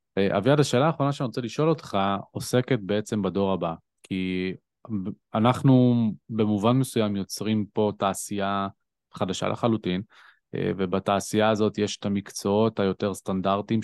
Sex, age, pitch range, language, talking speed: male, 20-39, 100-125 Hz, Hebrew, 115 wpm